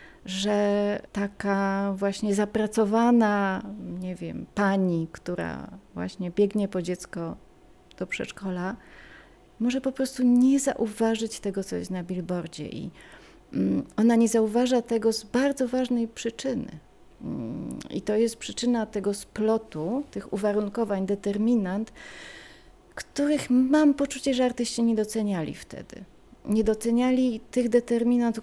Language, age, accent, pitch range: Polish, 30-49, native, 180-235 Hz